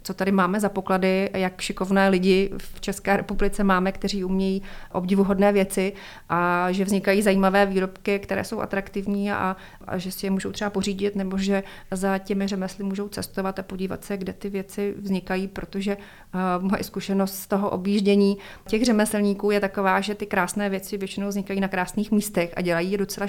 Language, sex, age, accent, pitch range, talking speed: Czech, female, 30-49, native, 190-200 Hz, 180 wpm